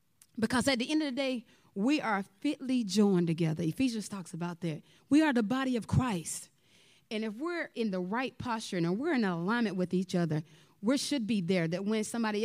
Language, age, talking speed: English, 30-49, 205 wpm